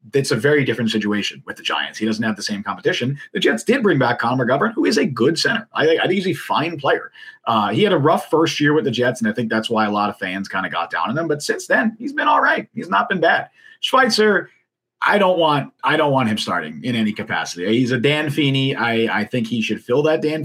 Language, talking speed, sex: English, 260 wpm, male